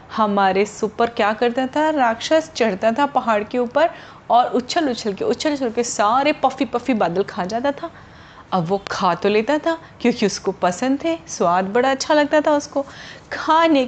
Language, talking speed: Hindi, 180 wpm